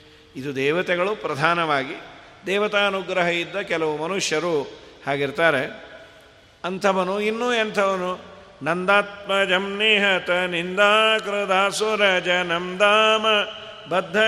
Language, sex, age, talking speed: Kannada, male, 50-69, 70 wpm